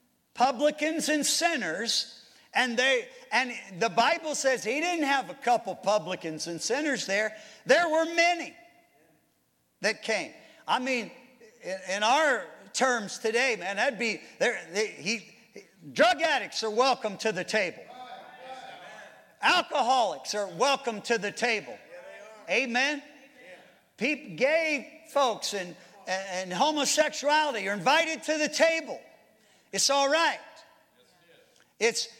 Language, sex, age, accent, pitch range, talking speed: English, male, 50-69, American, 205-280 Hz, 120 wpm